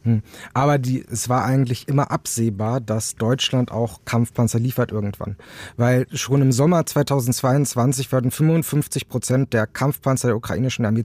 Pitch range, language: 120-145 Hz, German